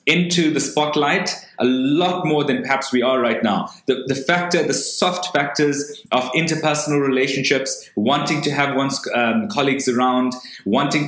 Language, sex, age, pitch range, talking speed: English, male, 20-39, 125-150 Hz, 155 wpm